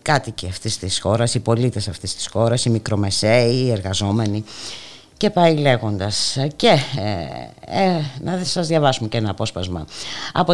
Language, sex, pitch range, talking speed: Greek, female, 95-140 Hz, 155 wpm